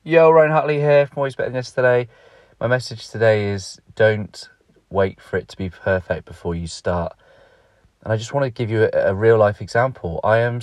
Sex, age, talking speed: male, 30-49, 200 wpm